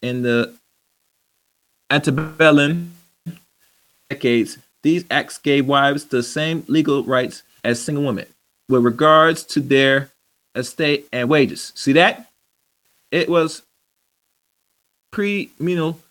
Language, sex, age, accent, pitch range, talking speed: English, male, 30-49, American, 130-155 Hz, 100 wpm